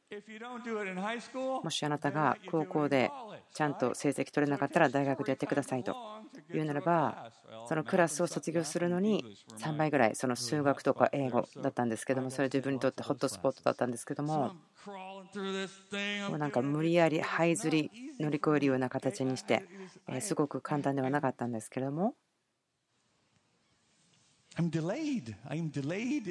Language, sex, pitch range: Japanese, female, 140-190 Hz